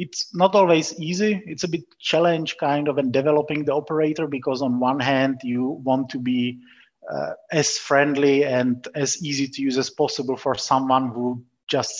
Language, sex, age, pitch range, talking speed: English, male, 30-49, 120-140 Hz, 180 wpm